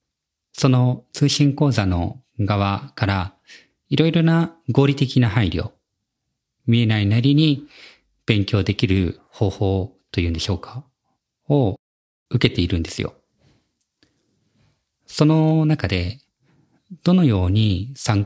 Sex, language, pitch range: male, Japanese, 95-130 Hz